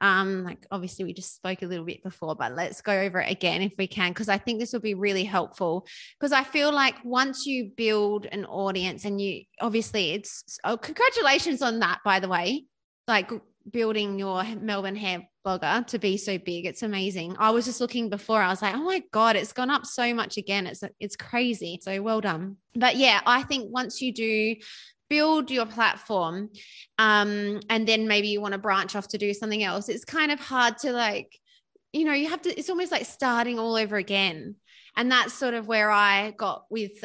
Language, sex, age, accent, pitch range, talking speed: English, female, 20-39, Australian, 195-245 Hz, 210 wpm